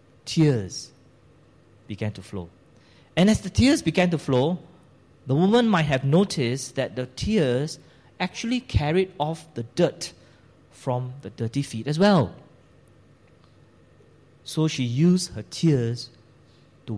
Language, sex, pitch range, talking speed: English, male, 115-150 Hz, 125 wpm